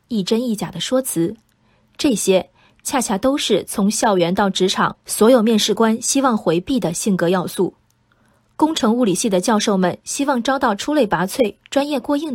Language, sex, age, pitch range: Chinese, female, 20-39, 190-255 Hz